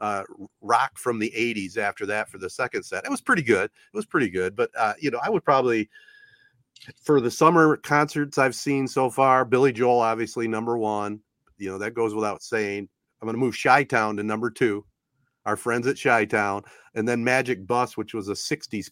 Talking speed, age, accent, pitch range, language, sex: 215 wpm, 40-59, American, 105-135 Hz, English, male